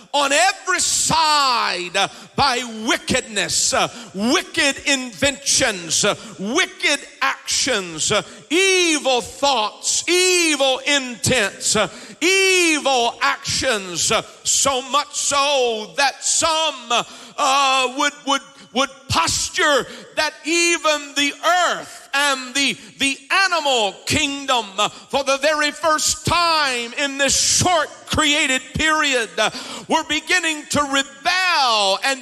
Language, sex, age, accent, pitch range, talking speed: English, male, 50-69, American, 240-305 Hz, 90 wpm